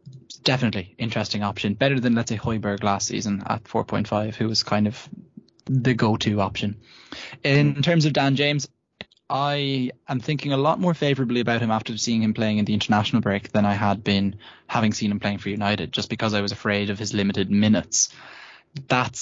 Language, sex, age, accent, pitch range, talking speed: English, male, 10-29, Irish, 105-135 Hz, 190 wpm